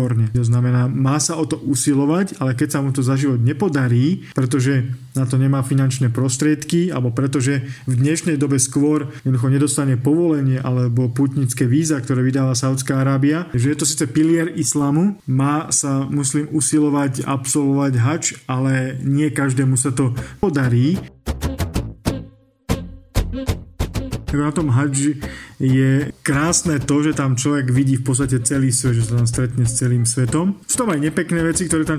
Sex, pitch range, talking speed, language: male, 130-145 Hz, 155 wpm, Slovak